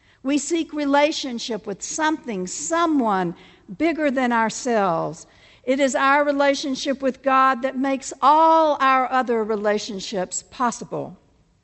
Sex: female